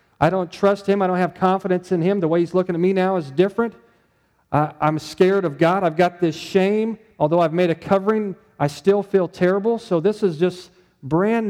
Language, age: English, 40-59